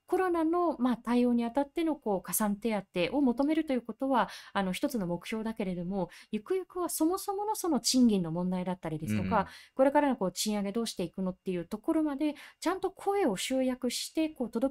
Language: Japanese